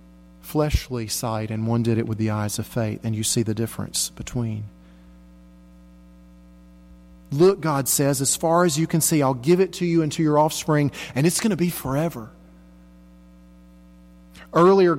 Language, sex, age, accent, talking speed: English, male, 40-59, American, 170 wpm